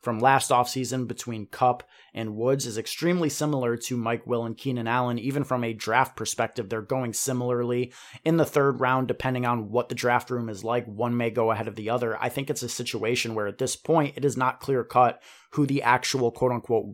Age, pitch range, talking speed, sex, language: 30-49, 115-130 Hz, 215 wpm, male, English